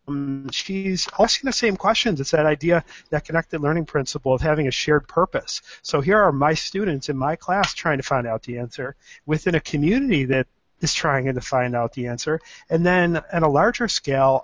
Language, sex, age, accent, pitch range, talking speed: English, male, 40-59, American, 135-175 Hz, 200 wpm